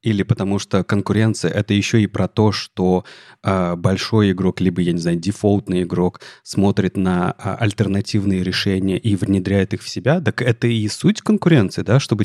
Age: 30-49